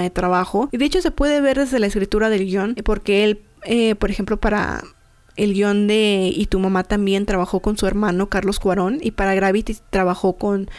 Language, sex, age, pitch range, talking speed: Spanish, female, 20-39, 190-225 Hz, 205 wpm